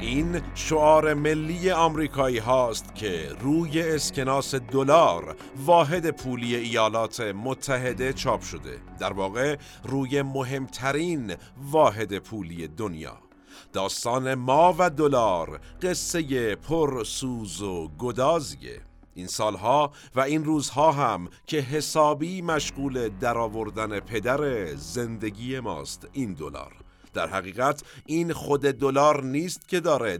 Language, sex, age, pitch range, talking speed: Persian, male, 50-69, 110-150 Hz, 105 wpm